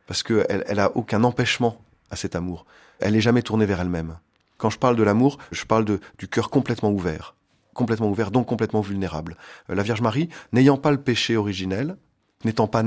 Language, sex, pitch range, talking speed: French, male, 100-125 Hz, 195 wpm